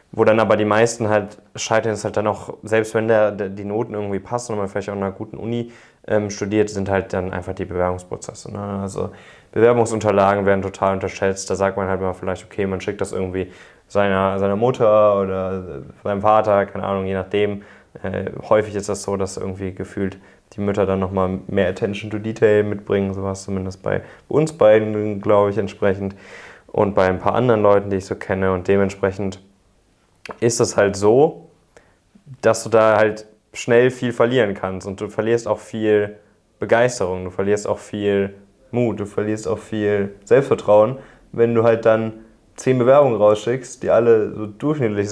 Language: German